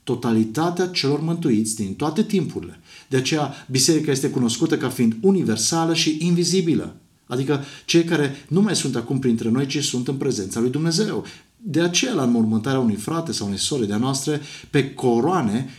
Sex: male